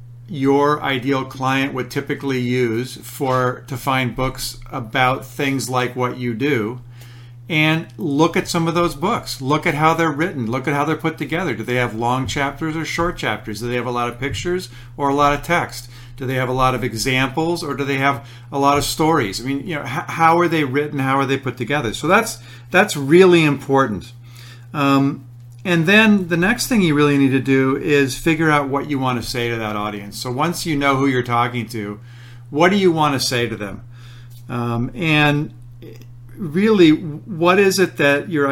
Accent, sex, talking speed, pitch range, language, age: American, male, 205 wpm, 120-150 Hz, English, 50-69